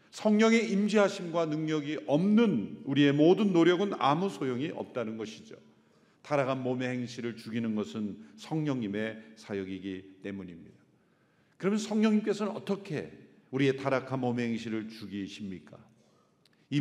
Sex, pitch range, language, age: male, 120-195 Hz, Korean, 50-69